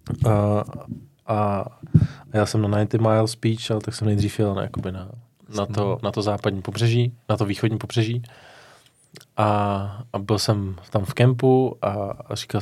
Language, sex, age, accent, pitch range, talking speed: Czech, male, 20-39, native, 105-120 Hz, 165 wpm